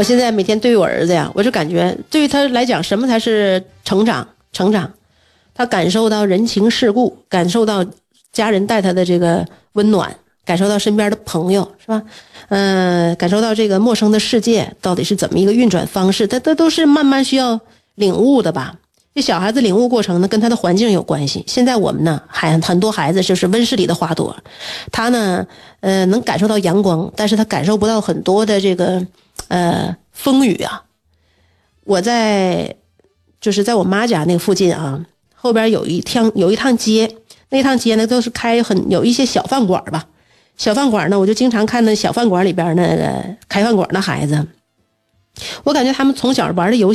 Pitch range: 185-235 Hz